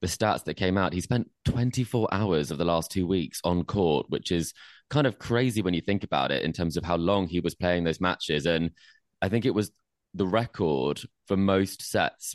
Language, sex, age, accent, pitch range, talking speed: English, male, 20-39, British, 85-100 Hz, 225 wpm